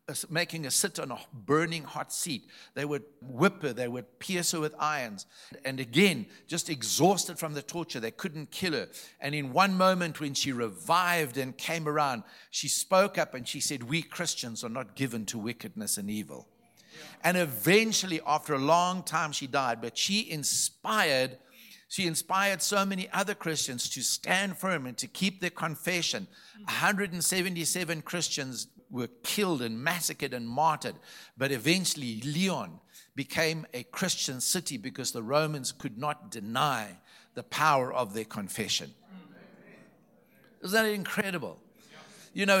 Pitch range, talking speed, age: 145-190 Hz, 155 wpm, 60-79